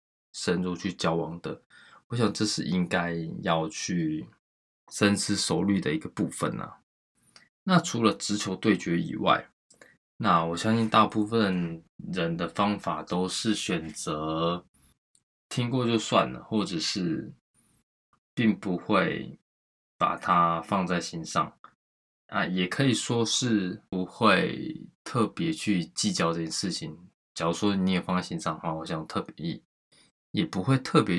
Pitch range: 85-115 Hz